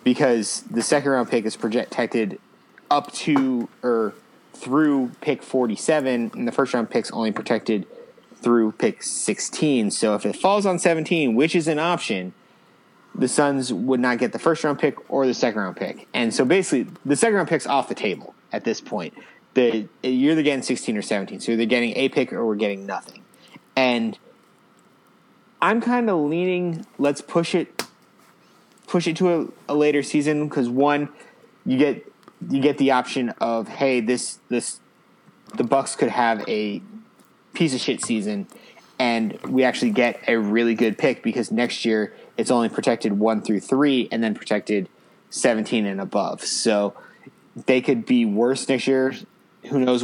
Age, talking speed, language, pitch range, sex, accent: 30-49, 170 wpm, English, 115-150 Hz, male, American